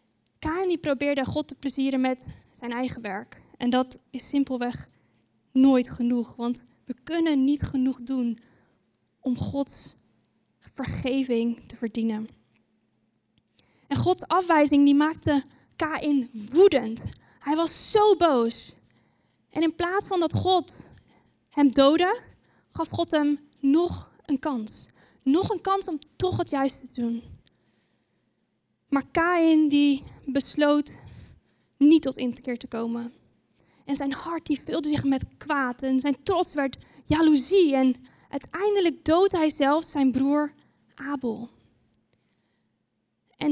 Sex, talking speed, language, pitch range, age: female, 125 wpm, Dutch, 245-300 Hz, 10-29